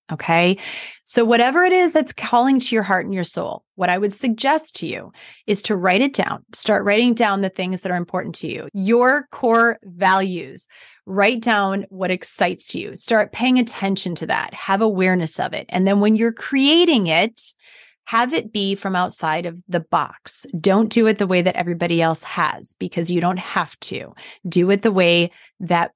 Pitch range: 180-225 Hz